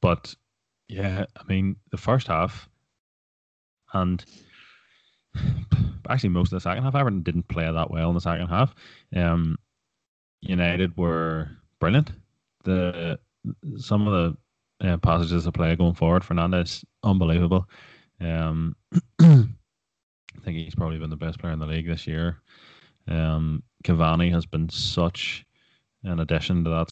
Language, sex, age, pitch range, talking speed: English, male, 20-39, 85-100 Hz, 140 wpm